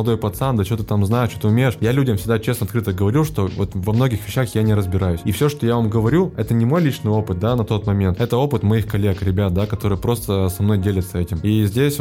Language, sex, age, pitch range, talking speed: Russian, male, 20-39, 100-115 Hz, 265 wpm